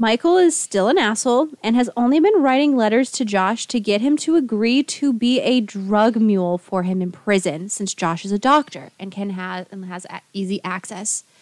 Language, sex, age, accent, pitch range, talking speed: English, female, 20-39, American, 195-255 Hz, 205 wpm